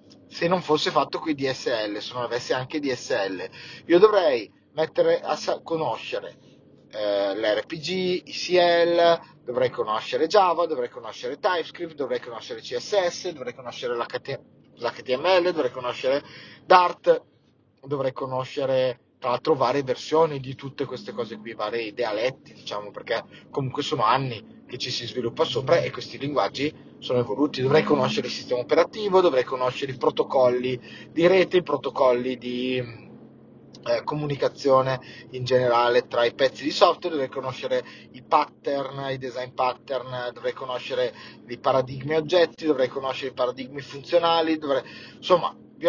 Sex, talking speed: male, 140 wpm